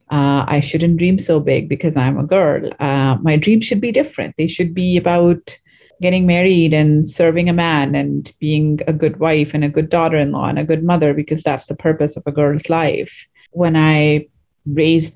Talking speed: 200 wpm